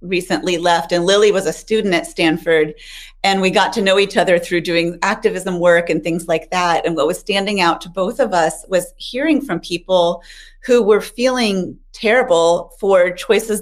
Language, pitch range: English, 170-205 Hz